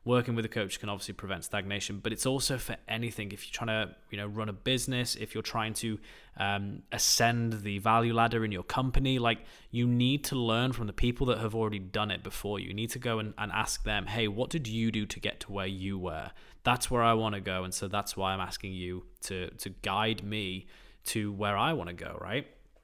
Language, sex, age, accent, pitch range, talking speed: English, male, 20-39, British, 100-115 Hz, 240 wpm